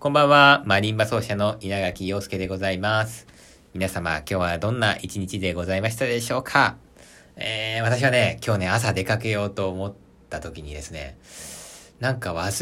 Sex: male